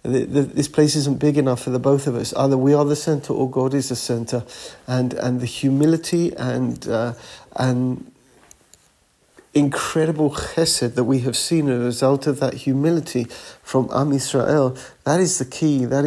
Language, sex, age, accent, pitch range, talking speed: English, male, 50-69, British, 125-140 Hz, 175 wpm